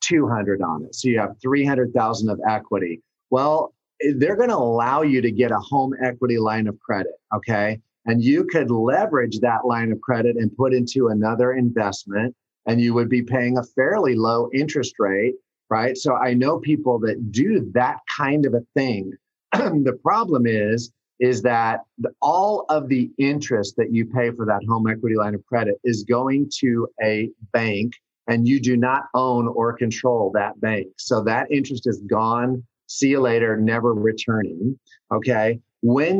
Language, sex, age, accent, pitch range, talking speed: English, male, 40-59, American, 115-130 Hz, 175 wpm